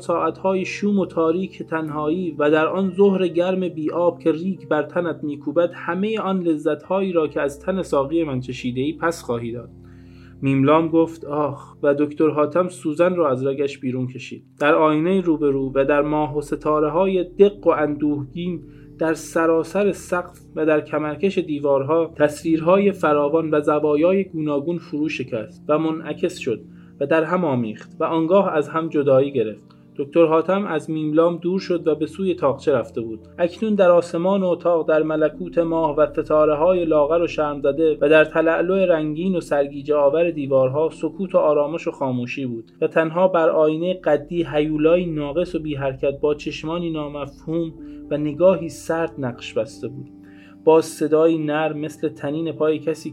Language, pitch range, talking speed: Persian, 145-170 Hz, 165 wpm